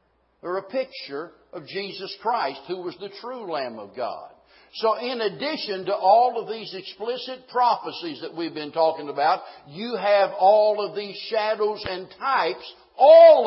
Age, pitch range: 60-79, 175-255 Hz